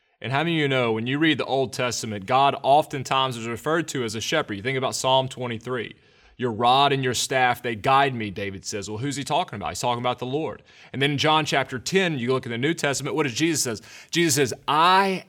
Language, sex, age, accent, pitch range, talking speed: English, male, 30-49, American, 110-145 Hz, 250 wpm